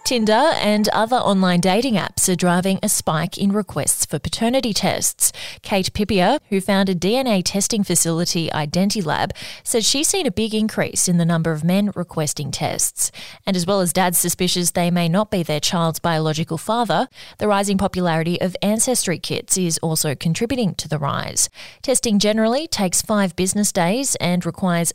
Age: 20-39